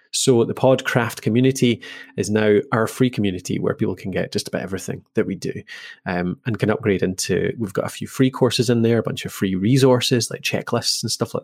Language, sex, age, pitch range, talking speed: English, male, 20-39, 105-130 Hz, 220 wpm